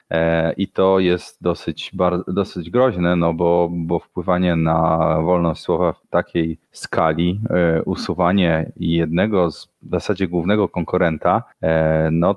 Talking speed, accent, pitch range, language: 110 wpm, native, 85-100 Hz, Polish